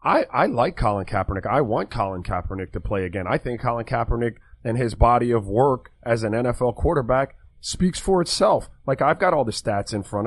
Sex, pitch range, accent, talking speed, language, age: male, 115-160 Hz, American, 210 wpm, English, 30-49